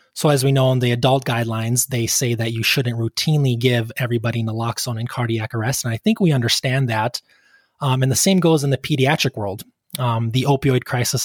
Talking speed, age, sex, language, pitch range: 210 wpm, 20-39, male, English, 115-135 Hz